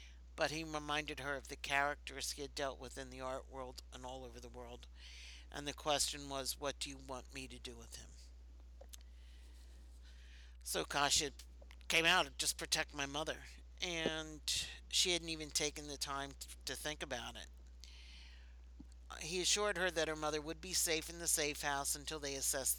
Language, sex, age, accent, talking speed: English, male, 60-79, American, 180 wpm